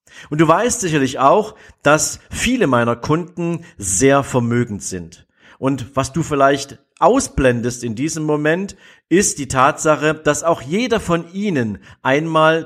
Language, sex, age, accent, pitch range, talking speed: German, male, 50-69, German, 125-165 Hz, 135 wpm